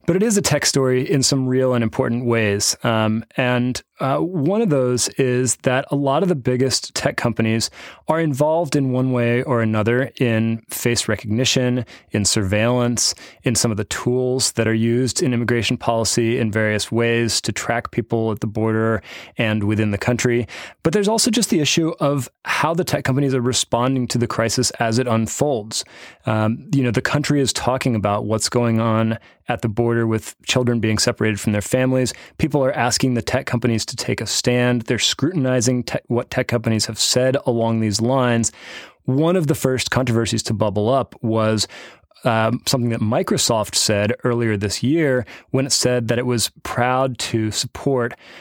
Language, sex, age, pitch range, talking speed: English, male, 30-49, 110-130 Hz, 185 wpm